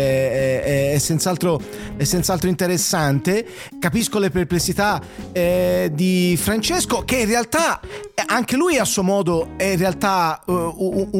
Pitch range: 170-215 Hz